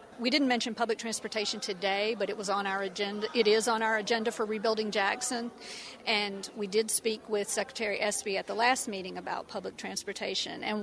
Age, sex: 50-69, female